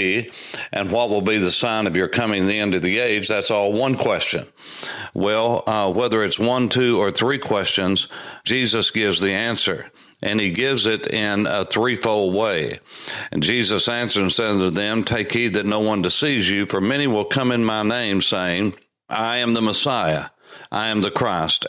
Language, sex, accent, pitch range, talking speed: English, male, American, 95-120 Hz, 195 wpm